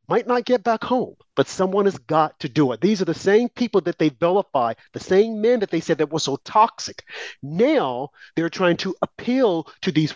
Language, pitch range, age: English, 175-235 Hz, 50-69